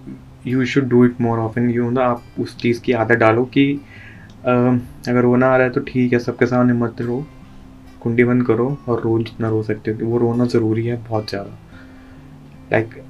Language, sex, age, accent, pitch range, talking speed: Hindi, male, 20-39, native, 110-125 Hz, 195 wpm